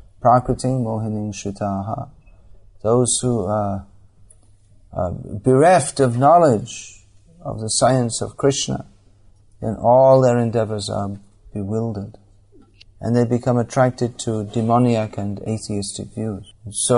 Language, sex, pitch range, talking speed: English, male, 100-120 Hz, 105 wpm